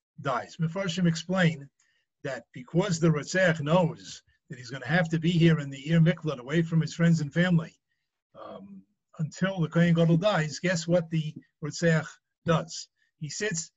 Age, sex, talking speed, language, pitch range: 50-69, male, 170 wpm, English, 155-175 Hz